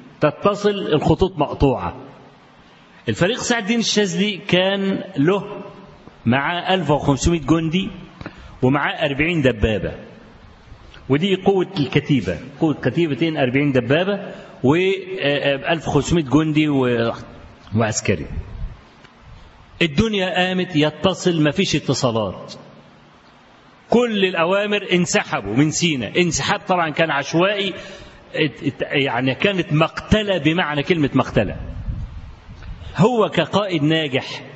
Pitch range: 135-190 Hz